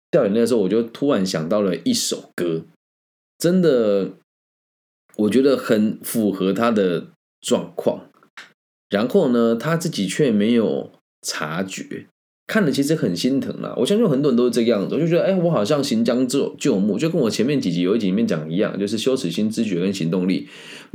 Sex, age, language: male, 20-39, Chinese